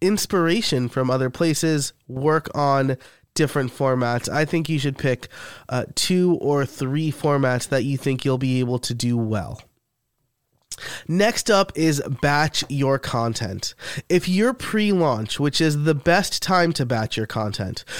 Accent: American